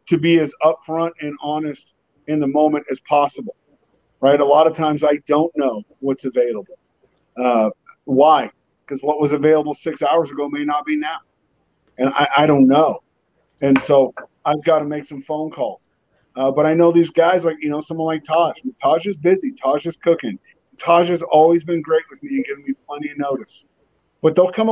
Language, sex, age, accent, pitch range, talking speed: English, male, 40-59, American, 145-175 Hz, 200 wpm